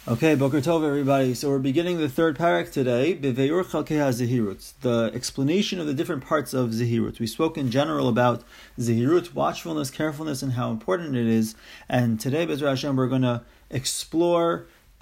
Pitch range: 130-180 Hz